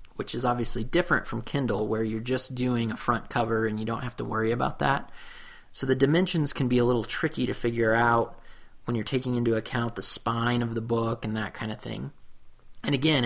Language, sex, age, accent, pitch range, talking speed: English, male, 30-49, American, 110-130 Hz, 220 wpm